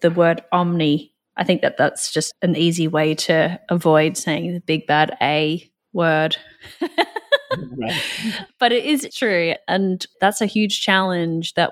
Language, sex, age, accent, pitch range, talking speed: English, female, 20-39, Australian, 155-175 Hz, 150 wpm